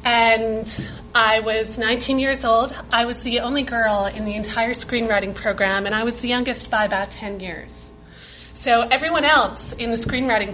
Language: English